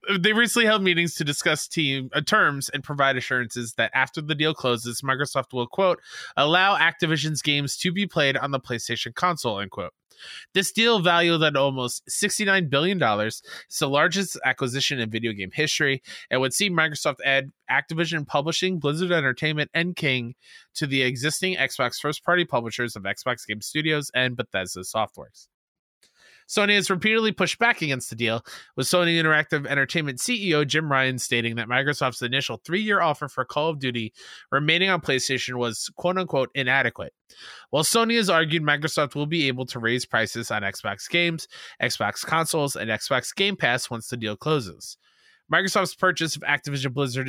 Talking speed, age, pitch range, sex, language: 170 wpm, 20-39, 130-175 Hz, male, English